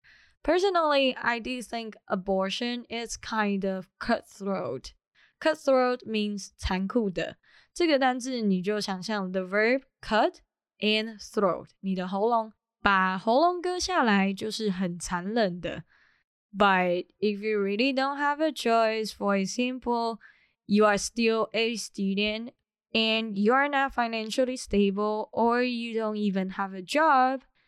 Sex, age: female, 10-29